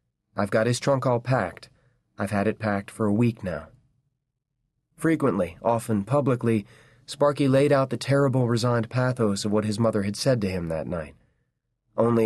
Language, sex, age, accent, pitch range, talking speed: English, male, 30-49, American, 100-125 Hz, 170 wpm